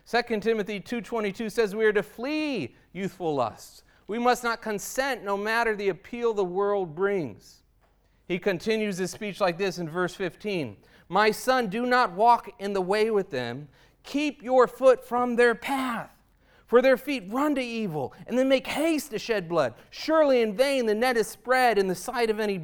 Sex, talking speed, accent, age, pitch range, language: male, 190 wpm, American, 40-59, 185-270 Hz, English